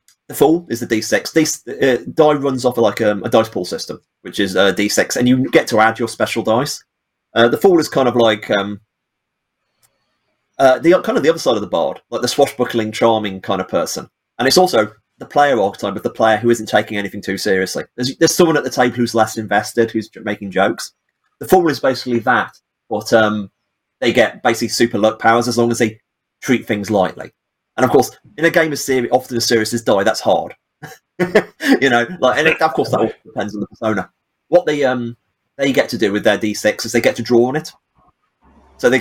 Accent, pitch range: British, 110-130 Hz